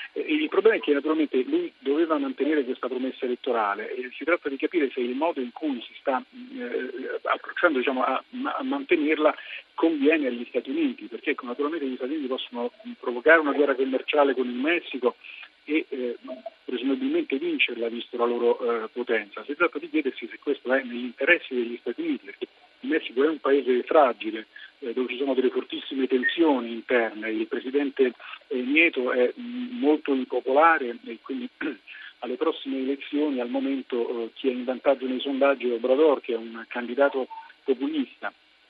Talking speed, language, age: 165 wpm, Italian, 40-59